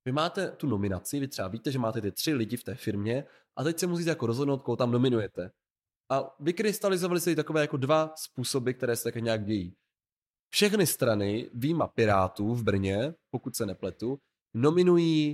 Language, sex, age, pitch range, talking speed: Czech, male, 20-39, 110-140 Hz, 180 wpm